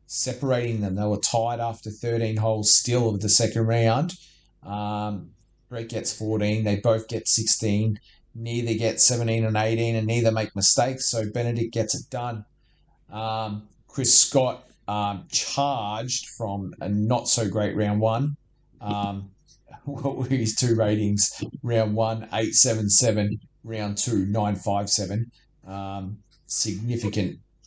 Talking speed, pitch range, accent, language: 135 wpm, 110-130 Hz, Australian, English